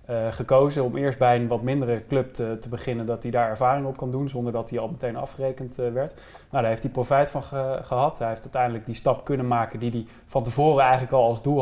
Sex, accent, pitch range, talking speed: male, Dutch, 115-135 Hz, 260 wpm